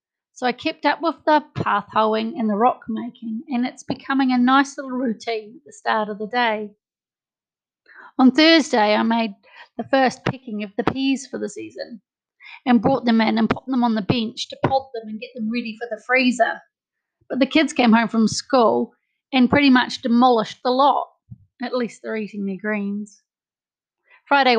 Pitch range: 220-260 Hz